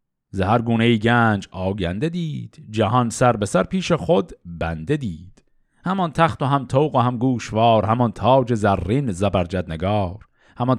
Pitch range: 100-140 Hz